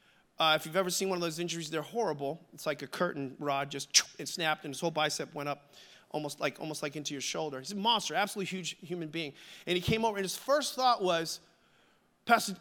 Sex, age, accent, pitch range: male, 30-49, American, 175-235 Hz